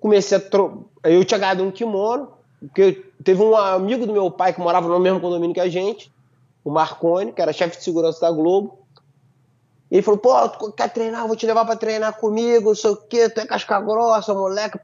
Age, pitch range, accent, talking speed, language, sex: 20-39, 170-220 Hz, Brazilian, 225 wpm, Portuguese, male